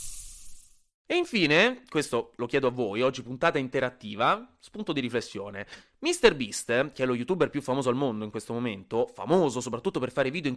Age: 30-49